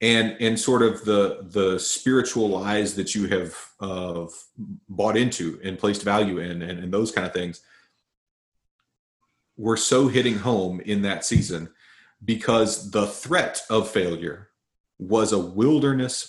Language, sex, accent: English, male, American